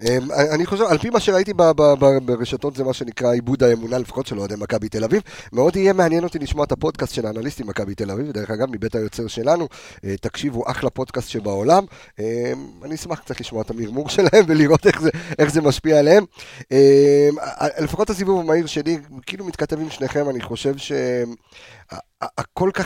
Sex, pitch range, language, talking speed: male, 120-155 Hz, Hebrew, 185 wpm